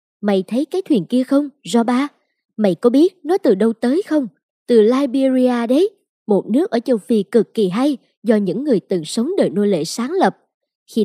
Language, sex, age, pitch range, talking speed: Vietnamese, male, 20-39, 200-275 Hz, 200 wpm